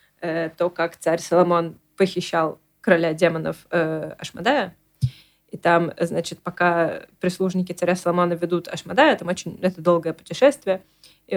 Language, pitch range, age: Russian, 165-195 Hz, 20-39